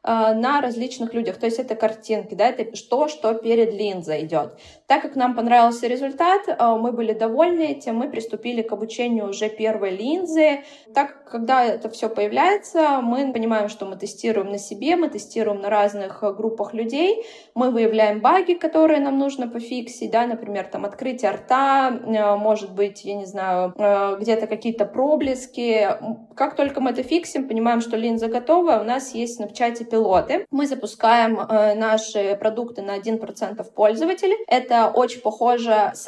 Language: Russian